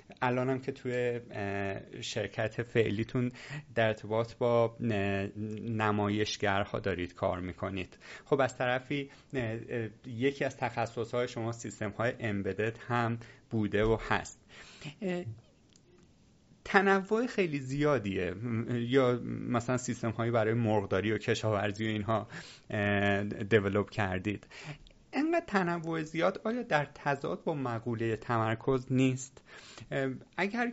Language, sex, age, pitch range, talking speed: Persian, male, 30-49, 115-150 Hz, 100 wpm